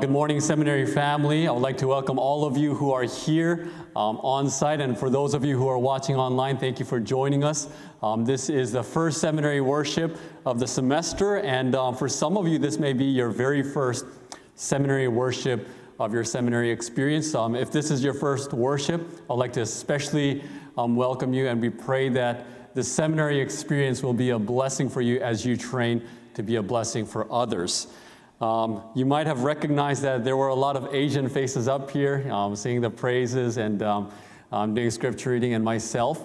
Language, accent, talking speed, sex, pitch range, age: English, American, 205 wpm, male, 115-140 Hz, 30-49